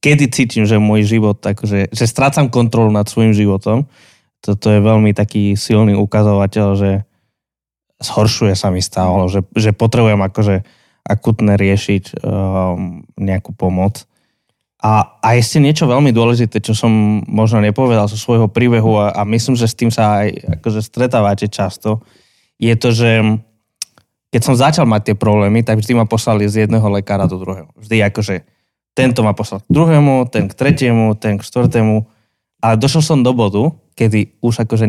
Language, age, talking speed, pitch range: Slovak, 20-39, 165 wpm, 105-120 Hz